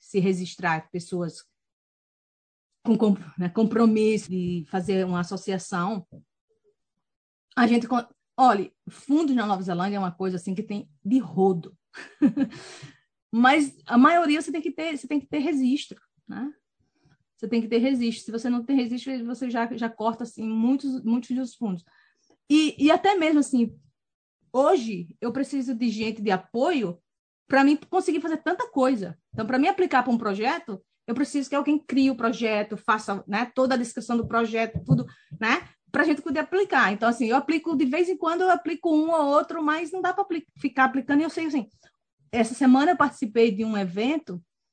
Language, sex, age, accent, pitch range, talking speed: Portuguese, female, 30-49, Brazilian, 210-290 Hz, 175 wpm